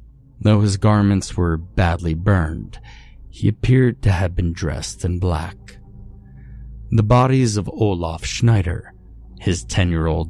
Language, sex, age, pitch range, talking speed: English, male, 30-49, 80-110 Hz, 120 wpm